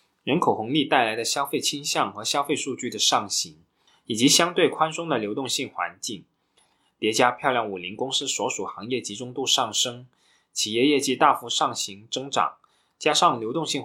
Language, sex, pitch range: Chinese, male, 105-140 Hz